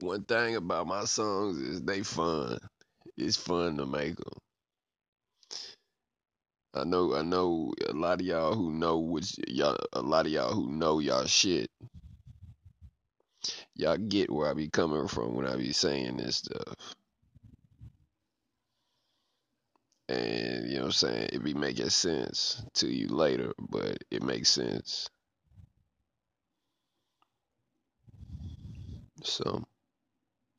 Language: English